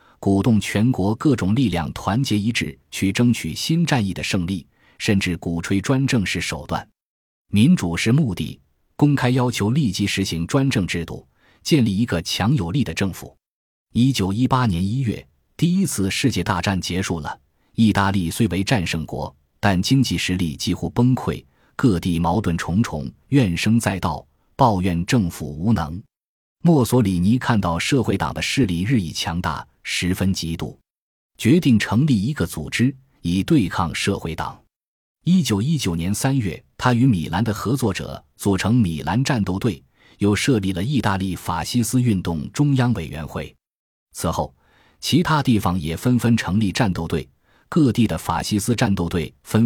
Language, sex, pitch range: Chinese, male, 85-120 Hz